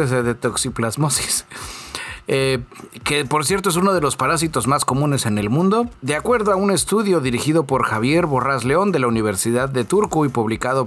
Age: 40-59